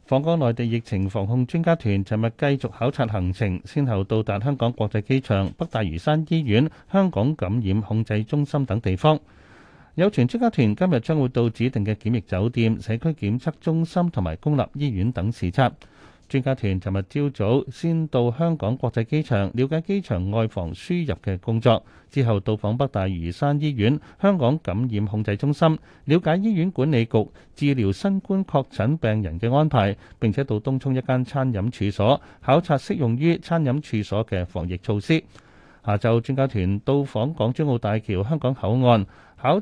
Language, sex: Chinese, male